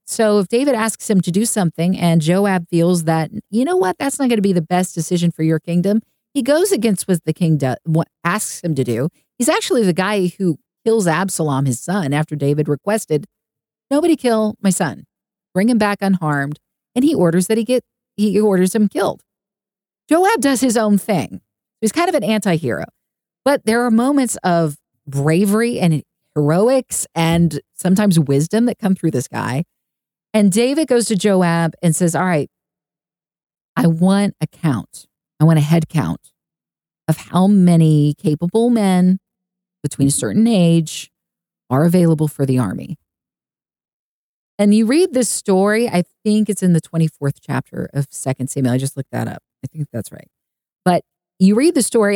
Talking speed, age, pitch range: 175 wpm, 40-59, 155-215 Hz